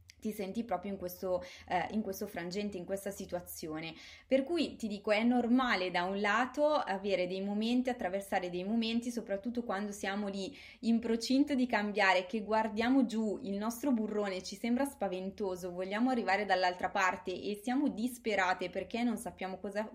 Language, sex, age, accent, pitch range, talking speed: Italian, female, 20-39, native, 185-230 Hz, 160 wpm